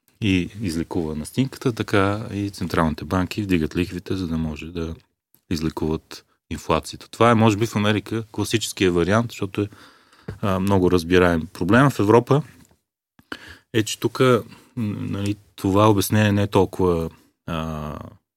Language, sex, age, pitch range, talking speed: Bulgarian, male, 30-49, 80-110 Hz, 135 wpm